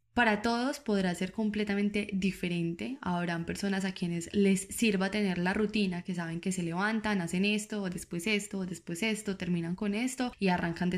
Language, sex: Spanish, female